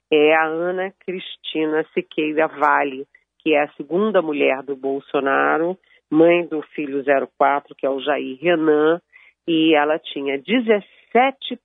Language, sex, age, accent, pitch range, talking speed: Portuguese, female, 40-59, Brazilian, 140-170 Hz, 135 wpm